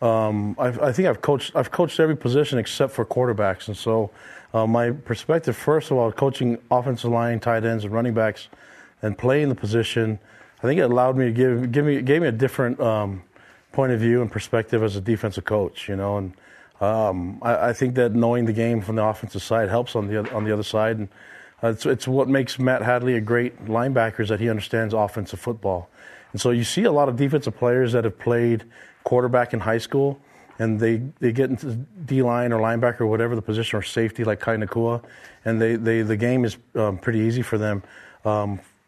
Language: English